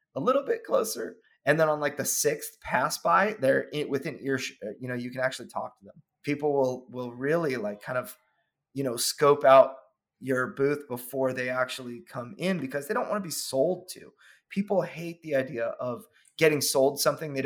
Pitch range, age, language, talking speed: 125-155 Hz, 30-49, English, 200 wpm